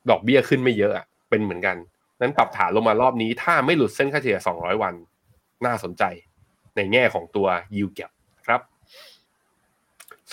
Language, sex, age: Thai, male, 20-39